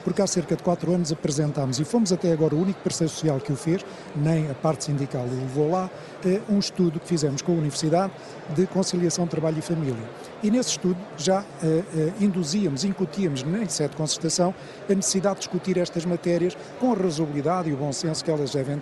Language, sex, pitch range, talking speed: Portuguese, male, 155-180 Hz, 210 wpm